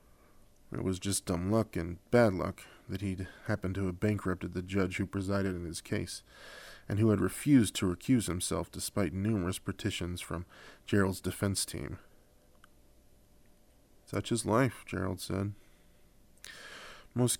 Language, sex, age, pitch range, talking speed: English, male, 20-39, 90-105 Hz, 140 wpm